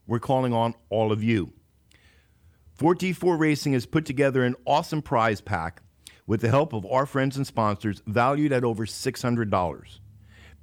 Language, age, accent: English, 50-69, American